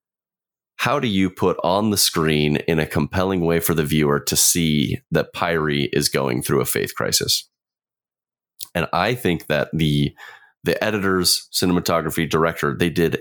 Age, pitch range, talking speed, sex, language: 30-49, 75-90 Hz, 160 wpm, male, English